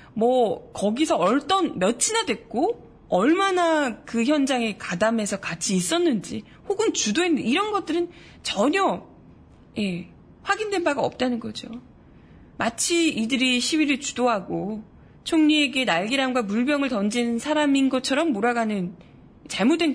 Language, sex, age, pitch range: Korean, female, 20-39, 215-305 Hz